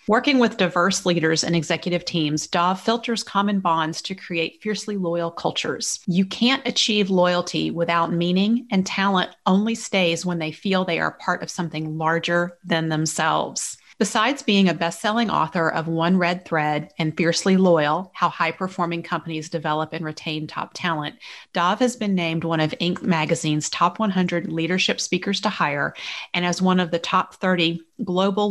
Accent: American